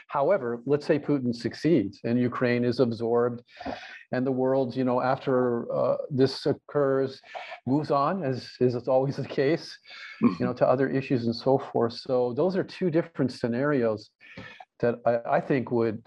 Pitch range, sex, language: 120-145 Hz, male, English